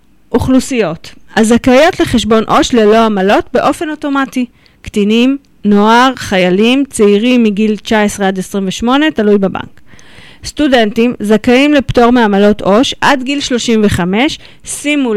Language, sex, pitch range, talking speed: Hebrew, female, 200-270 Hz, 105 wpm